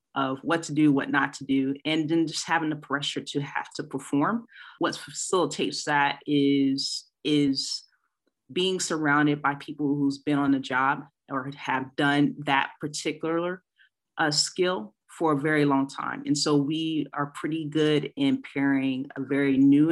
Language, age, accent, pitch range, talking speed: English, 30-49, American, 140-155 Hz, 165 wpm